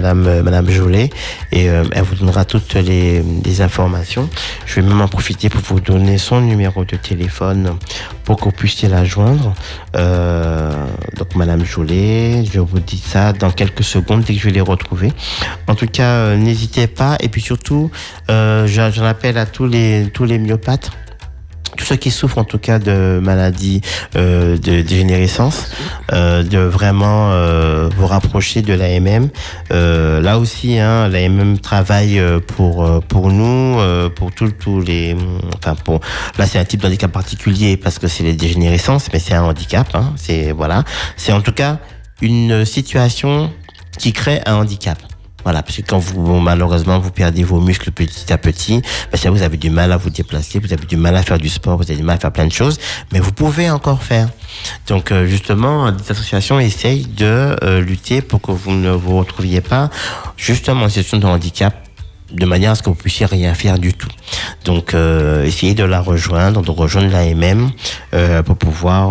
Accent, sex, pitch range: French, male, 85-110 Hz